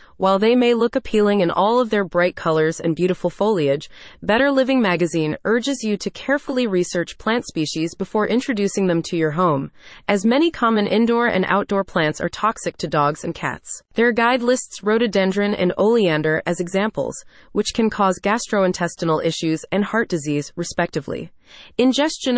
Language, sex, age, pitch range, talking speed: English, female, 30-49, 170-230 Hz, 165 wpm